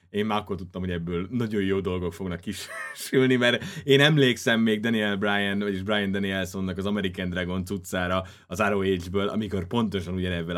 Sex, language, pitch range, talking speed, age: male, Hungarian, 90-125 Hz, 165 wpm, 30-49